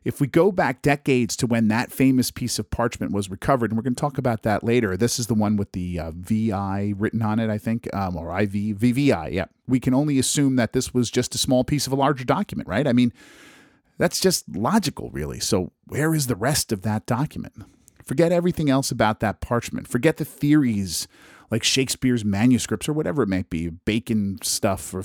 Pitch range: 105-145 Hz